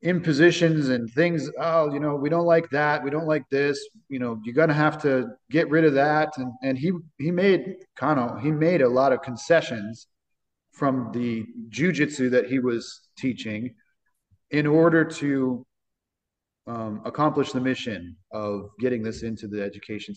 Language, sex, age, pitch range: English, male, 30-49, 110-150 Hz